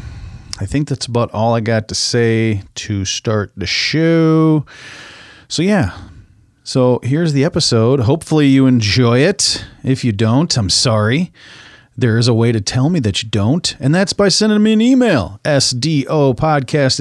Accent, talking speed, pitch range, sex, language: American, 160 wpm, 105-145 Hz, male, English